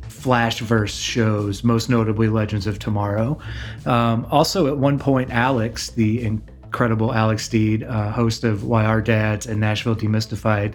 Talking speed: 145 wpm